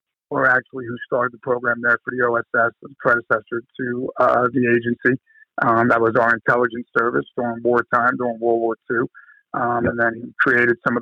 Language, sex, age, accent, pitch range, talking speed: English, male, 50-69, American, 120-130 Hz, 190 wpm